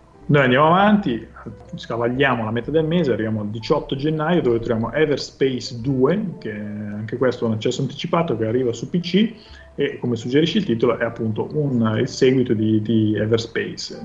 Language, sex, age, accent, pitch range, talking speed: Italian, male, 30-49, native, 110-135 Hz, 175 wpm